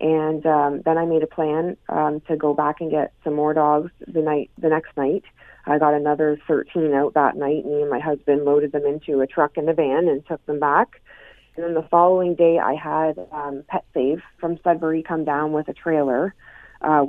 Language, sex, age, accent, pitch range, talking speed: English, female, 30-49, American, 135-155 Hz, 220 wpm